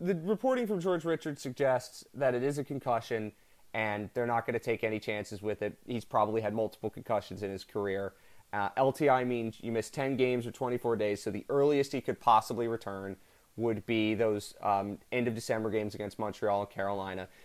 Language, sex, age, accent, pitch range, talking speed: English, male, 30-49, American, 110-140 Hz, 195 wpm